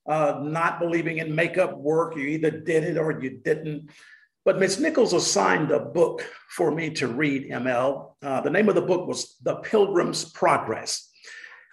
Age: 50-69